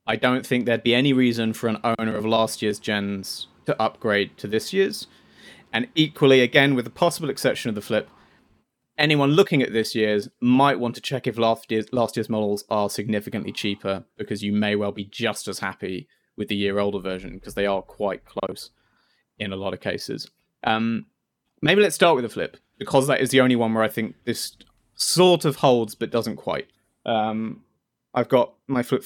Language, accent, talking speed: English, British, 200 wpm